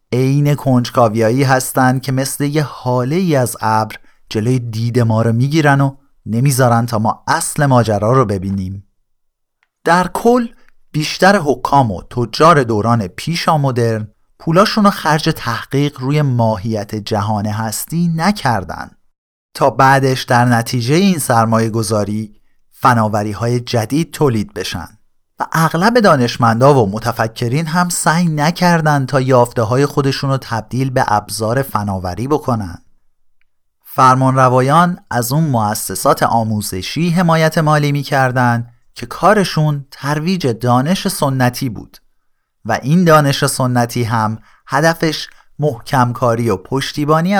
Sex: male